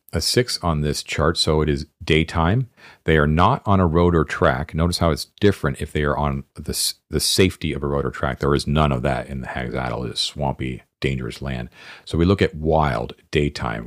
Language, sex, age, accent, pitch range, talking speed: English, male, 50-69, American, 65-85 Hz, 225 wpm